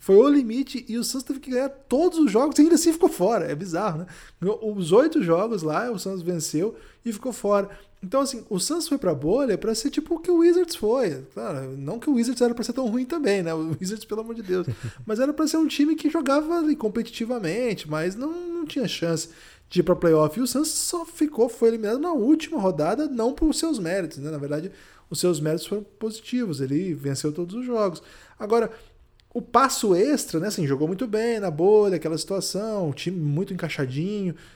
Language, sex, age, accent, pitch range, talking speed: Portuguese, male, 20-39, Brazilian, 160-245 Hz, 215 wpm